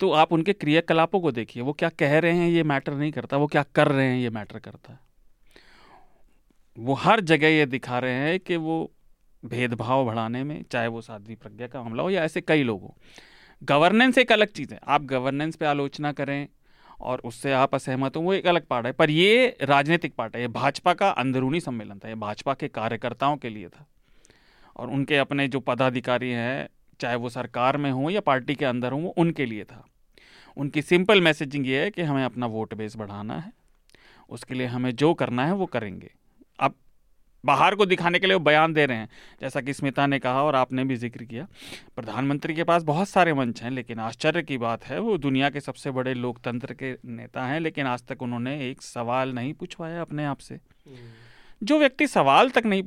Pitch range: 125-160 Hz